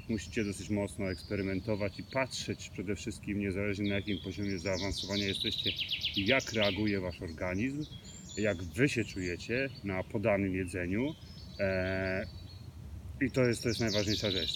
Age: 30-49